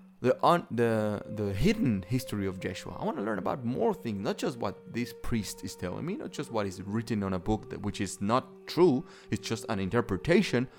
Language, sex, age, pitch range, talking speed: English, male, 30-49, 95-135 Hz, 220 wpm